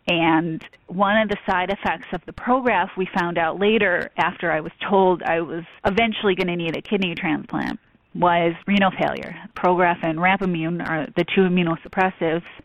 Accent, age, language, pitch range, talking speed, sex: American, 30-49, English, 165-195 Hz, 170 wpm, female